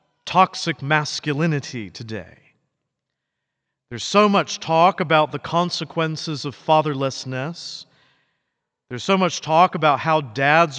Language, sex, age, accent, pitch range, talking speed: English, male, 50-69, American, 150-185 Hz, 105 wpm